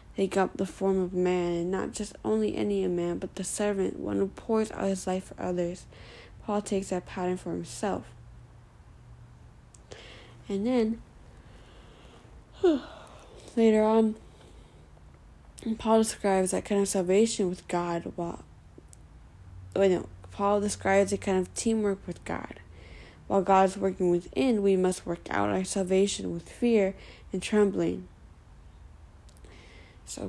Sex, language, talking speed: female, English, 135 wpm